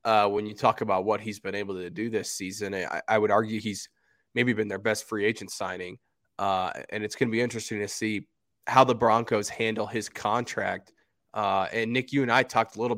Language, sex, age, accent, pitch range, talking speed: English, male, 20-39, American, 110-130 Hz, 225 wpm